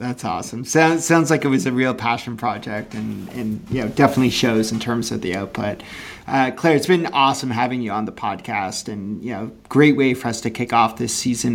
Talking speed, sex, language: 235 wpm, male, English